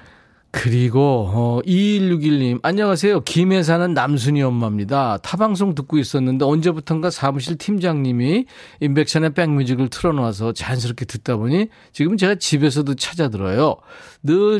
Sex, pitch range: male, 135-180 Hz